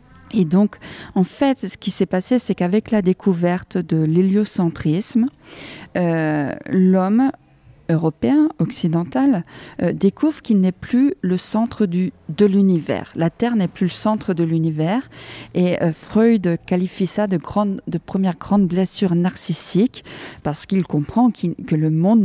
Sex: female